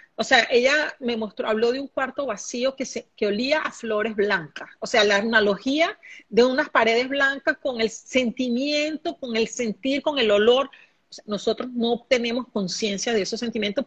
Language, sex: Spanish, female